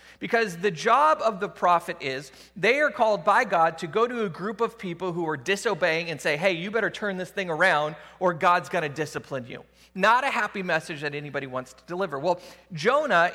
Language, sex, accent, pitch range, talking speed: English, male, American, 165-210 Hz, 215 wpm